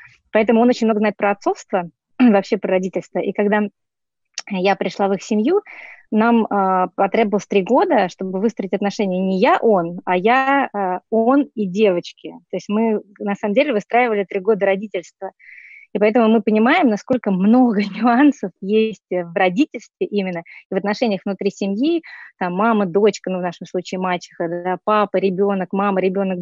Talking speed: 165 wpm